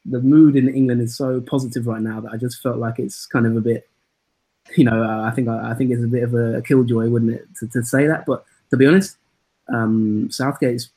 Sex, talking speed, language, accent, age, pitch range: male, 245 wpm, English, British, 20-39, 115-125 Hz